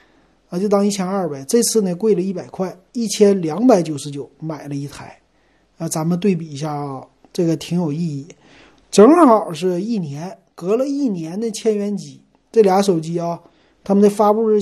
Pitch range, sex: 155-205 Hz, male